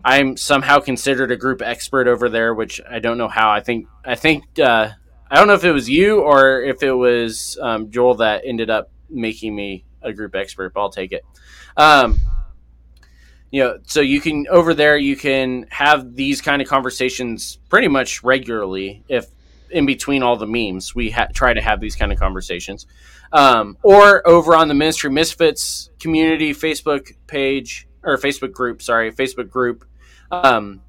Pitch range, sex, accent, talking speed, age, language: 115-140 Hz, male, American, 180 wpm, 20-39, English